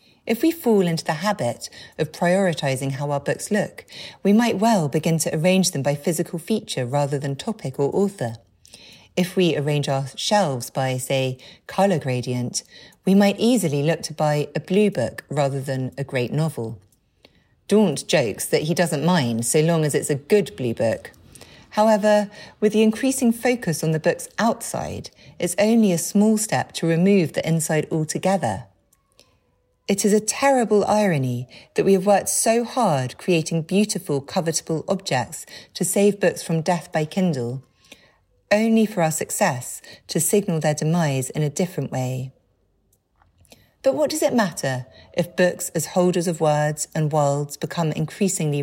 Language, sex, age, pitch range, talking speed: English, female, 40-59, 140-200 Hz, 165 wpm